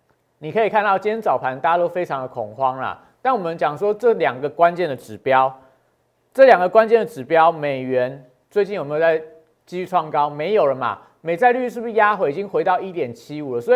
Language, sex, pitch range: Chinese, male, 155-210 Hz